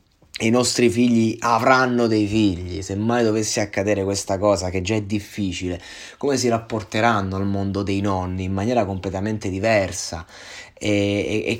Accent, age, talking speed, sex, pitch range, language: native, 20-39, 155 wpm, male, 100-125 Hz, Italian